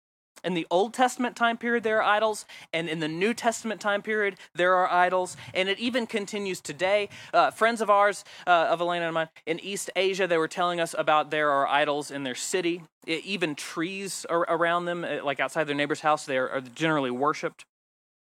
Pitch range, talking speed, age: 150-195 Hz, 200 wpm, 30-49